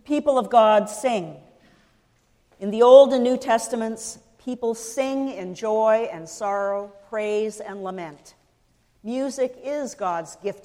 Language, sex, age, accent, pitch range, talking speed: English, female, 50-69, American, 185-240 Hz, 130 wpm